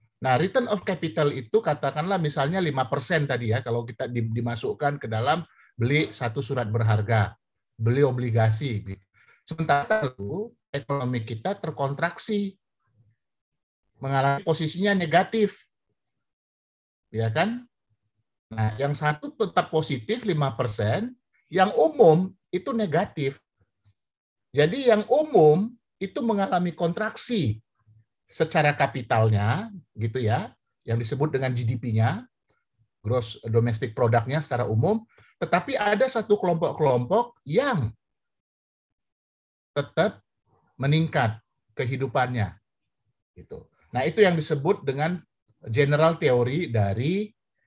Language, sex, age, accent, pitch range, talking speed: Indonesian, male, 50-69, native, 110-170 Hz, 100 wpm